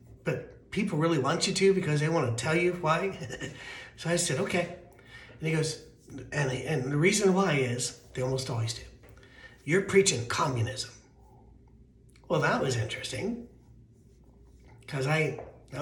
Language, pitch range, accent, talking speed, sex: English, 125-165 Hz, American, 150 wpm, male